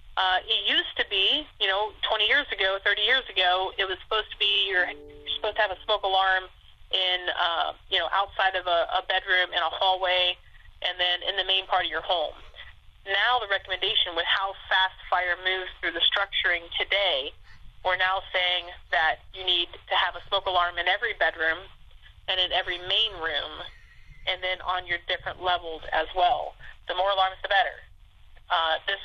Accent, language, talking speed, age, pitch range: American, English, 190 wpm, 30-49, 180-215 Hz